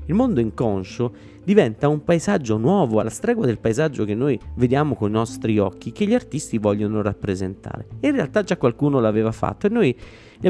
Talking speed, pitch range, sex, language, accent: 185 wpm, 105-165 Hz, male, Italian, native